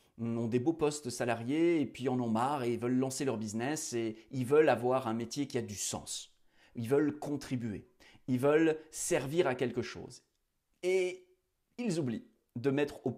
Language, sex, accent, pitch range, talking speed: French, male, French, 120-150 Hz, 180 wpm